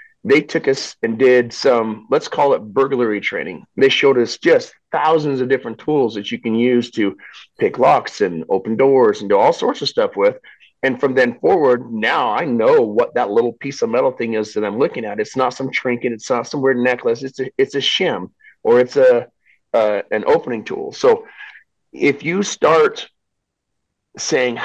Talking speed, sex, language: 195 wpm, male, English